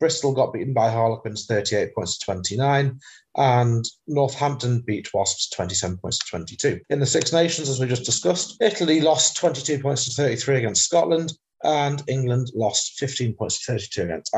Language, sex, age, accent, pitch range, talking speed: English, male, 40-59, British, 110-150 Hz, 170 wpm